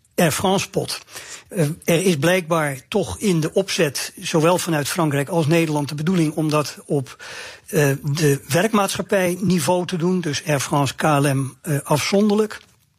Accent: Dutch